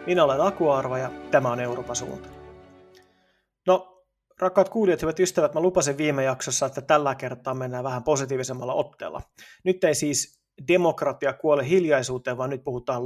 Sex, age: male, 30-49